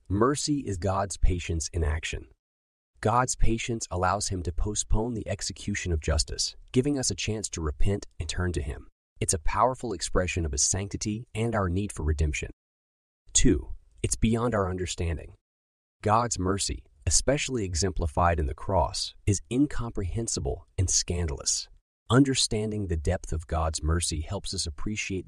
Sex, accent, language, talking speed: male, American, English, 150 wpm